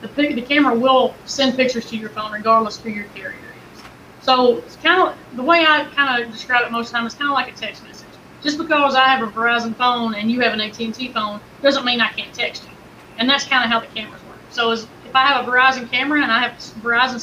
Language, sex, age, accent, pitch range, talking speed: English, female, 30-49, American, 225-250 Hz, 255 wpm